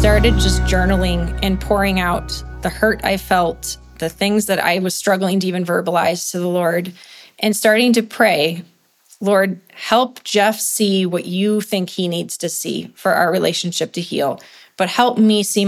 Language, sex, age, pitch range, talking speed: English, female, 20-39, 180-215 Hz, 175 wpm